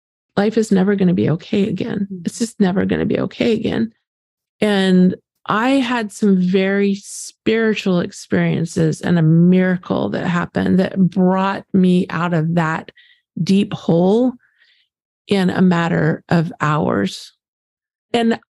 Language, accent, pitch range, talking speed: English, American, 175-210 Hz, 135 wpm